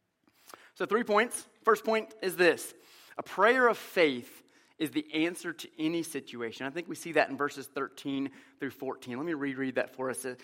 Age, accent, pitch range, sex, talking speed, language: 30-49, American, 130-170 Hz, male, 190 wpm, English